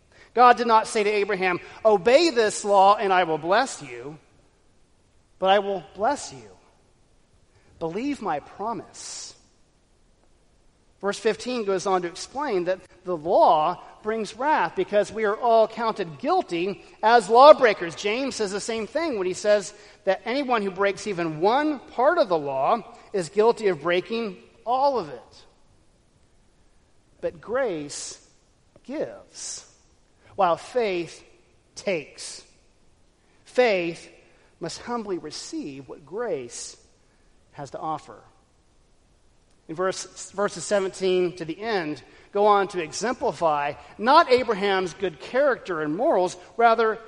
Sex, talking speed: male, 125 wpm